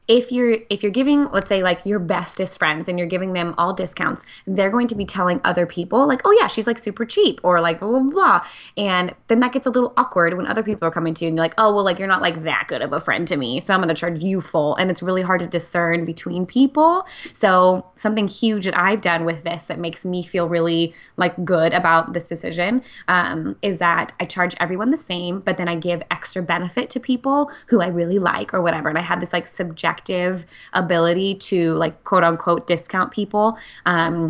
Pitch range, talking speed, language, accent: 165-195 Hz, 235 wpm, English, American